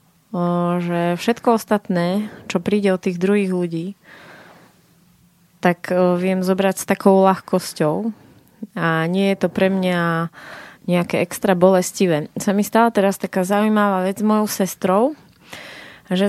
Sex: female